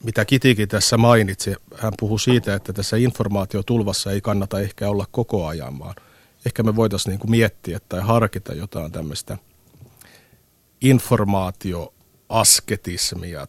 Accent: native